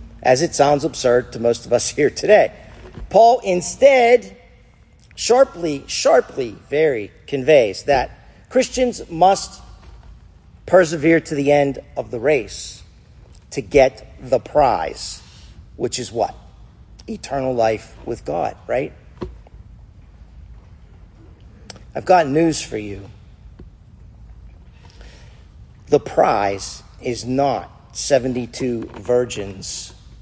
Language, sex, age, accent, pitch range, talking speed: English, male, 50-69, American, 110-170 Hz, 95 wpm